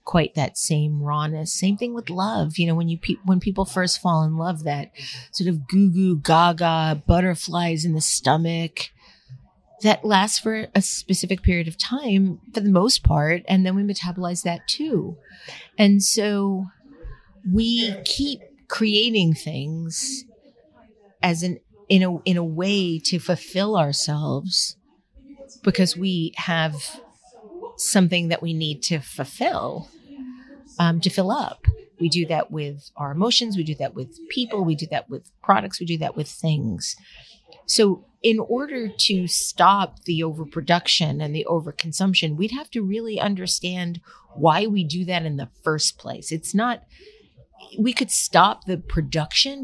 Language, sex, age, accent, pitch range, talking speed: English, female, 40-59, American, 160-210 Hz, 155 wpm